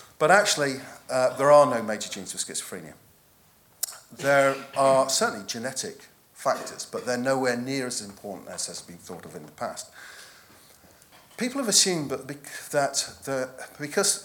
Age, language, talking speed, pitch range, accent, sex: 40-59, English, 155 wpm, 115-155 Hz, British, male